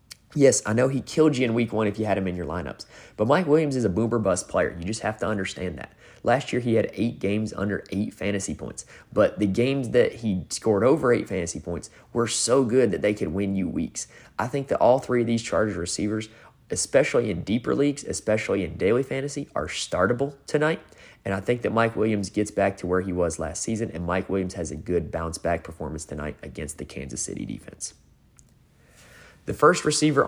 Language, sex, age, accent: English, male, 20-39, American